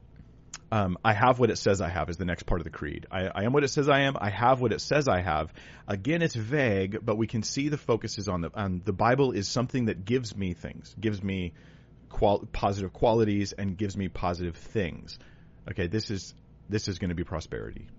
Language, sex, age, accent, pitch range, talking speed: English, male, 30-49, American, 90-110 Hz, 235 wpm